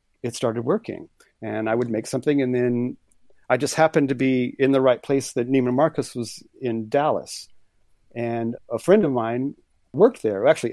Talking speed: 185 wpm